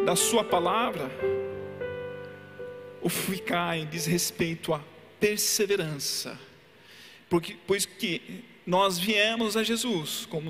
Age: 40-59